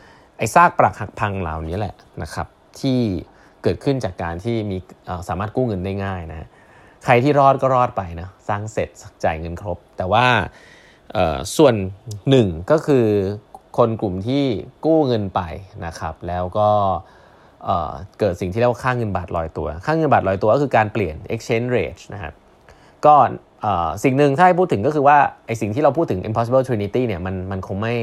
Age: 20-39